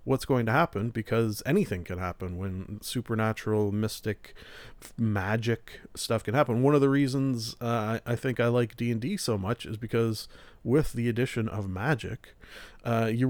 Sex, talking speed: male, 175 wpm